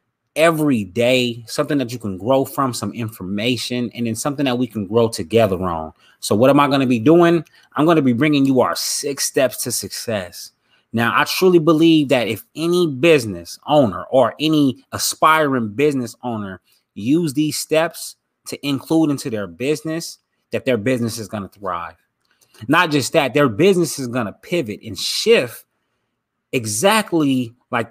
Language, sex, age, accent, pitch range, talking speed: English, male, 20-39, American, 115-150 Hz, 170 wpm